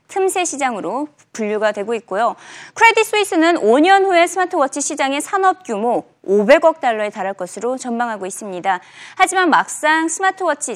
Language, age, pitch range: Korean, 20-39, 230-370 Hz